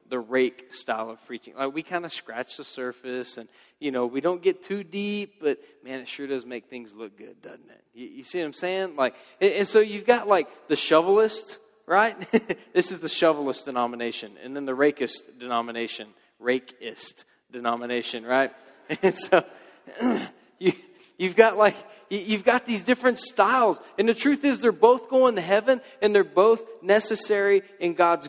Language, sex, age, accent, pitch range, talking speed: English, male, 20-39, American, 125-200 Hz, 180 wpm